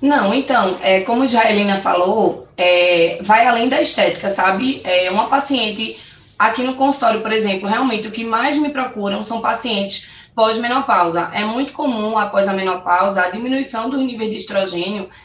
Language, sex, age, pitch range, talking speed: Portuguese, female, 20-39, 195-255 Hz, 170 wpm